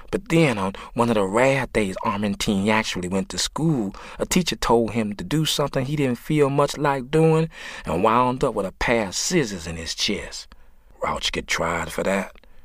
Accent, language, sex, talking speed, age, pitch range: American, English, male, 200 wpm, 40-59, 80-115 Hz